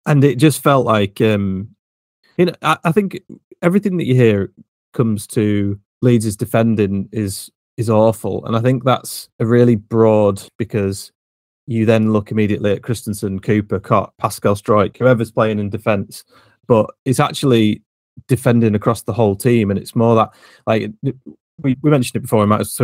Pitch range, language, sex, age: 100-120 Hz, English, male, 30-49